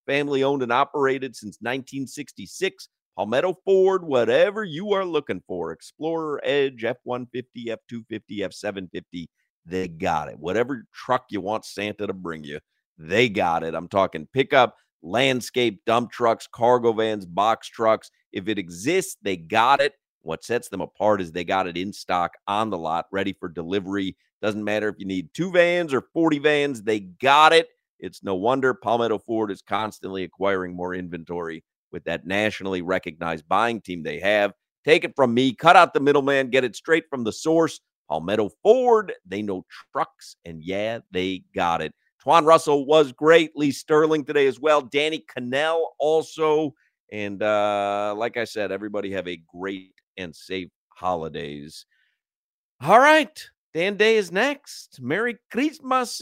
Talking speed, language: 160 wpm, English